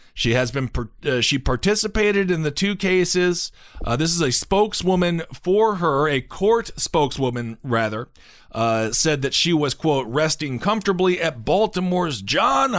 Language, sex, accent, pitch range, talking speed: English, male, American, 125-175 Hz, 150 wpm